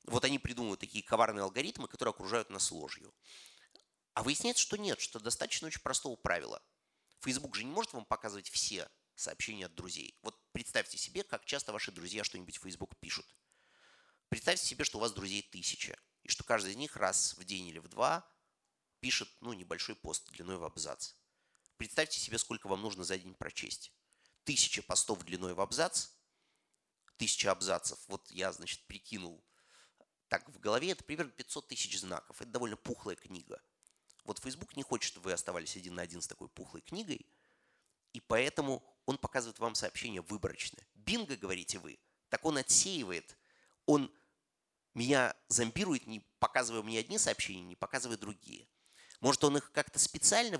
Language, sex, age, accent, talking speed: Russian, male, 30-49, native, 165 wpm